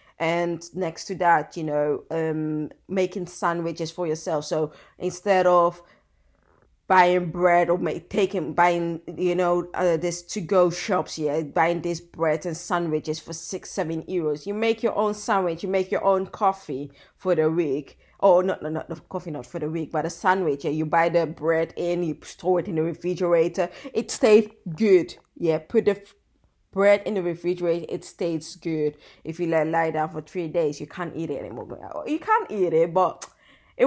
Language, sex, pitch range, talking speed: English, female, 155-185 Hz, 190 wpm